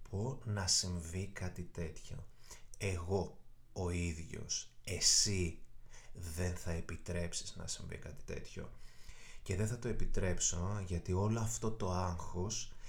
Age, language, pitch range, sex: 30-49, Greek, 85-110 Hz, male